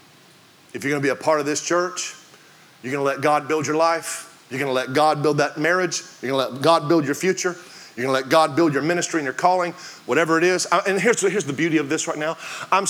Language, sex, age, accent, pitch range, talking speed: English, male, 30-49, American, 165-210 Hz, 270 wpm